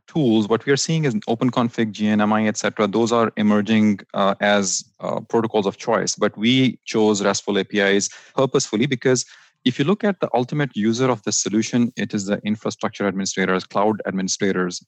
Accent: Indian